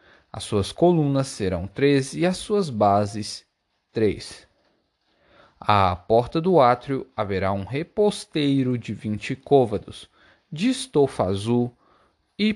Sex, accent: male, Brazilian